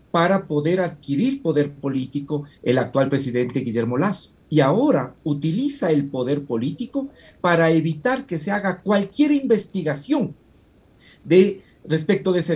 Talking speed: 130 wpm